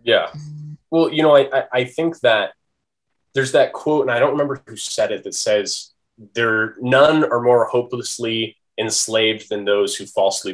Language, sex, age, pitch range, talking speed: English, male, 20-39, 110-140 Hz, 165 wpm